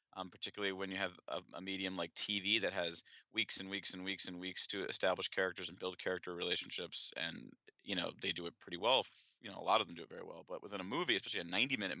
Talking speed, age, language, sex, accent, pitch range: 255 wpm, 30-49, English, male, American, 95-105 Hz